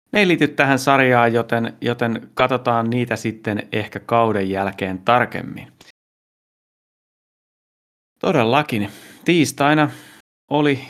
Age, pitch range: 30-49, 105-120 Hz